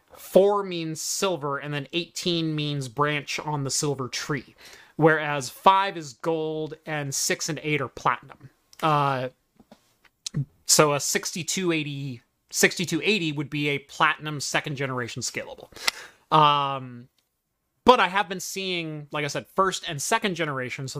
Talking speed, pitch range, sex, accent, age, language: 135 wpm, 140-170 Hz, male, American, 30-49, English